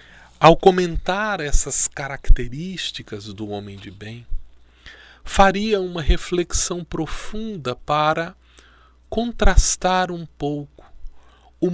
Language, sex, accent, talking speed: Portuguese, male, Brazilian, 85 wpm